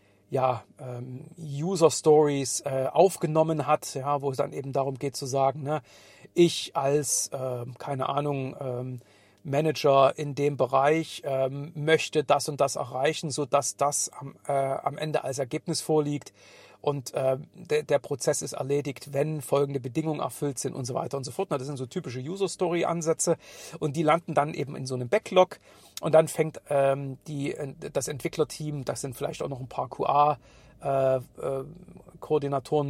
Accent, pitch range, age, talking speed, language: German, 135-155 Hz, 50-69, 155 wpm, German